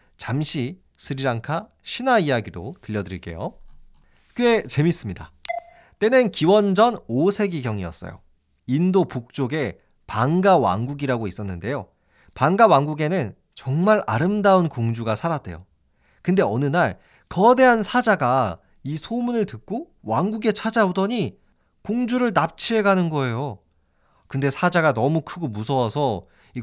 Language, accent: Korean, native